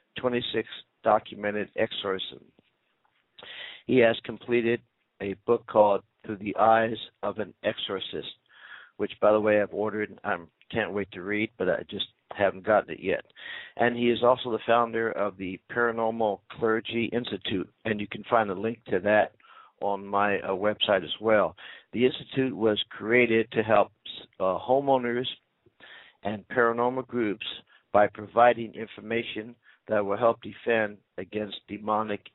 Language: English